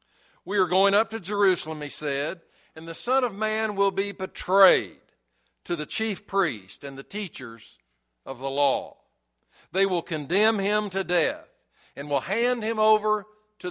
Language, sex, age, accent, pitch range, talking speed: English, male, 60-79, American, 145-210 Hz, 165 wpm